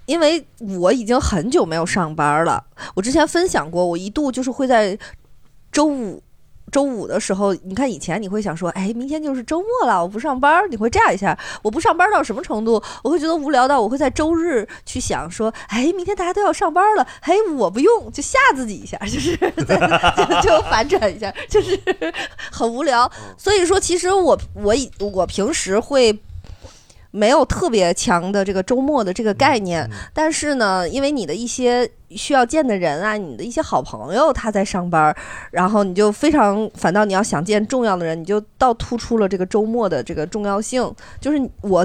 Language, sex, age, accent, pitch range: Chinese, female, 20-39, native, 190-285 Hz